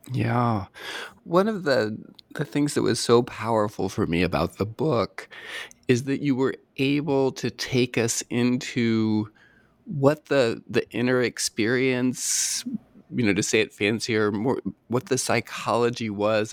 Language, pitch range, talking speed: English, 100-130 Hz, 145 wpm